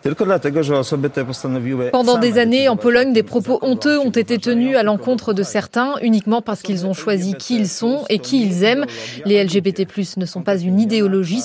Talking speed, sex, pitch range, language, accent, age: 180 wpm, female, 195-240 Hz, French, French, 20-39